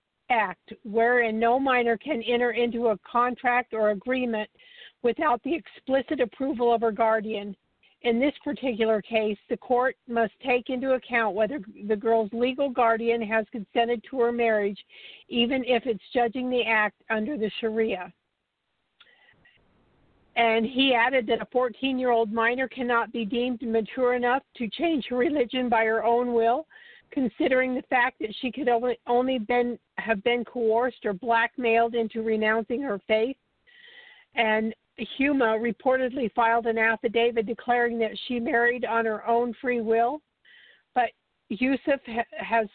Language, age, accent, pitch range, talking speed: English, 50-69, American, 225-255 Hz, 140 wpm